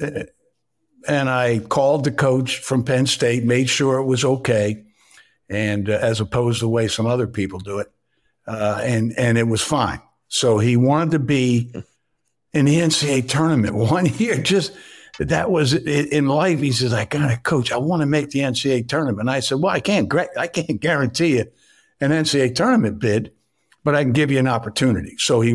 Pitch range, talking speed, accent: 105-135 Hz, 195 wpm, American